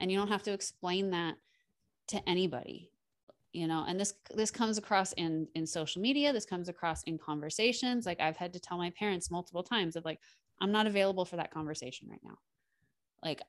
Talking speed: 200 wpm